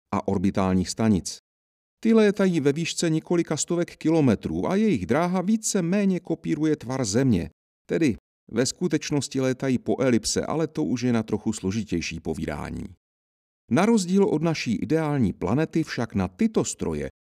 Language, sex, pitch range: Czech, male, 95-160 Hz